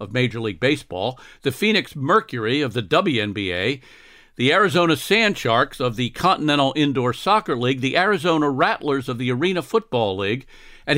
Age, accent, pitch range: 50-69, American, 125-160 Hz